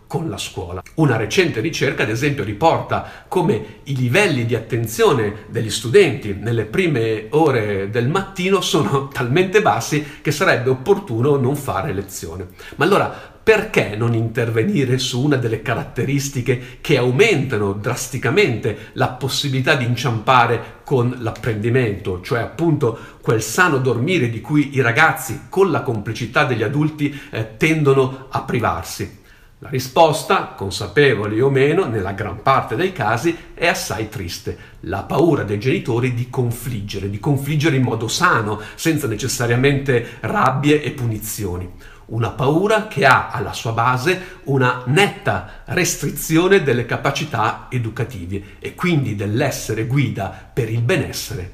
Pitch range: 110-145 Hz